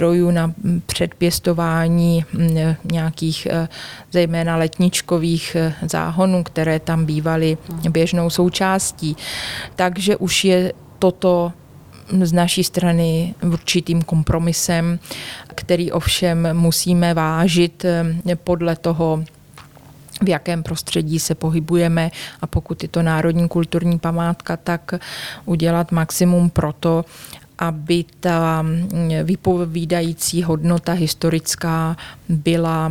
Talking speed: 90 wpm